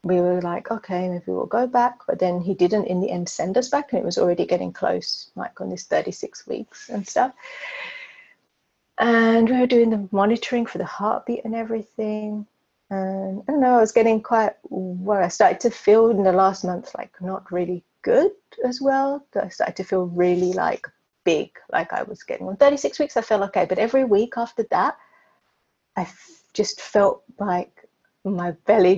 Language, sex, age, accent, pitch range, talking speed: English, female, 30-49, British, 185-245 Hz, 195 wpm